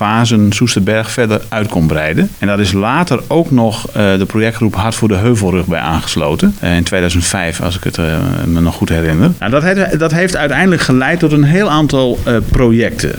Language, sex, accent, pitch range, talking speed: Dutch, male, Dutch, 100-135 Hz, 175 wpm